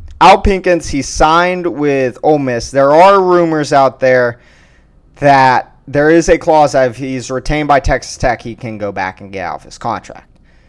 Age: 20-39